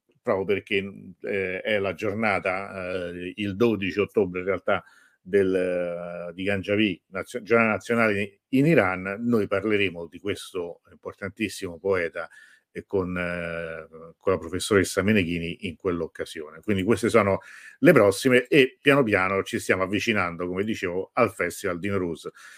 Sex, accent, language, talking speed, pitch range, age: male, native, Italian, 140 wpm, 95-120 Hz, 50-69